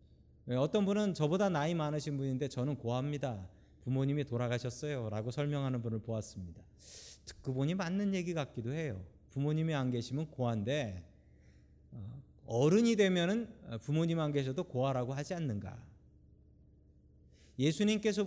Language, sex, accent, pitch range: Korean, male, native, 105-175 Hz